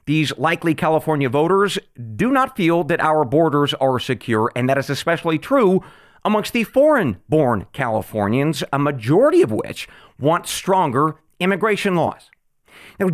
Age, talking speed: 40-59, 135 wpm